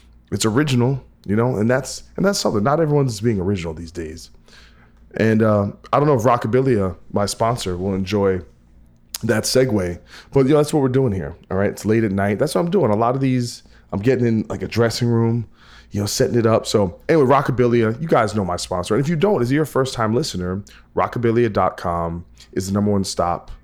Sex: male